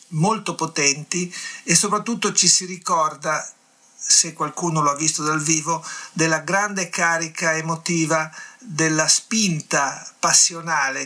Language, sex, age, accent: Italian, male, 50-69, native